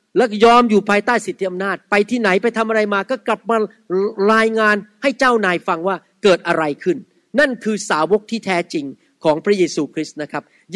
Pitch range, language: 180-235 Hz, Thai